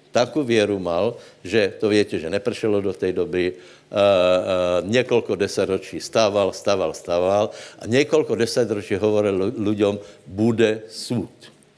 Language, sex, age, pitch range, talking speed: Slovak, male, 60-79, 100-115 Hz, 145 wpm